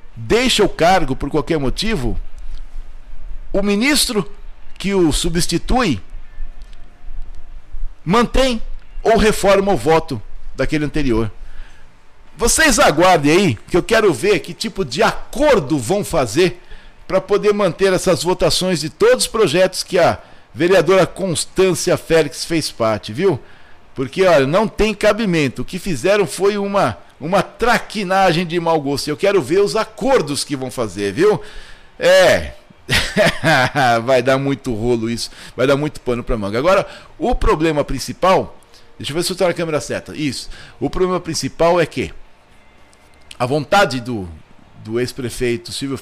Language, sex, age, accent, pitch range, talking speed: Portuguese, male, 60-79, Brazilian, 115-190 Hz, 140 wpm